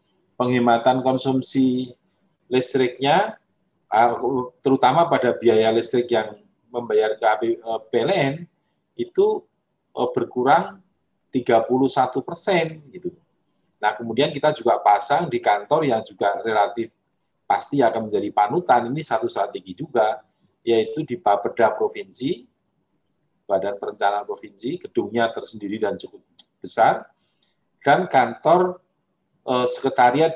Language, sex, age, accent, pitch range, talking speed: Indonesian, male, 40-59, native, 115-150 Hz, 95 wpm